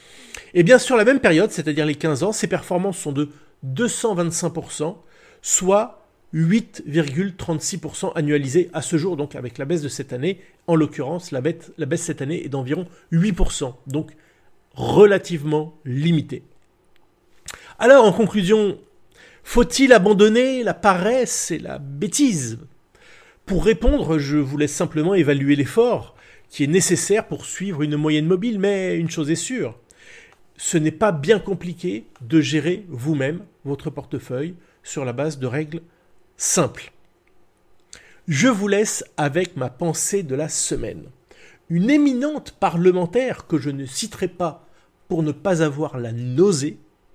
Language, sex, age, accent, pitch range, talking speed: French, male, 40-59, French, 150-200 Hz, 145 wpm